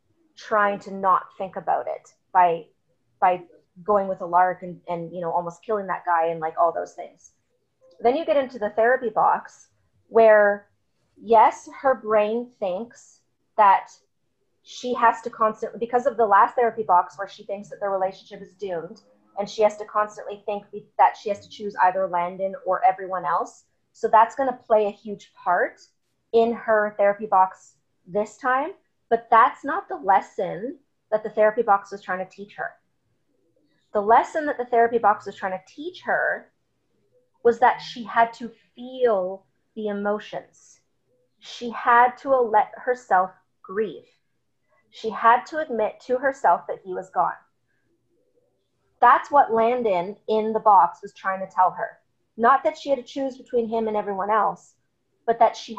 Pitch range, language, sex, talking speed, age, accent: 190-240 Hz, English, female, 170 wpm, 30-49, American